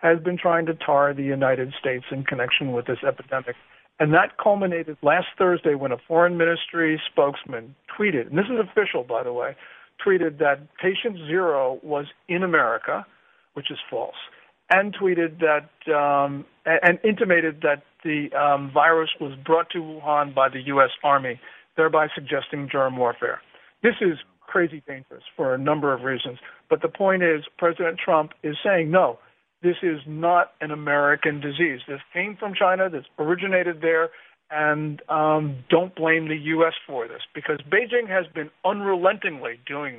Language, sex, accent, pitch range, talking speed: English, male, American, 145-175 Hz, 160 wpm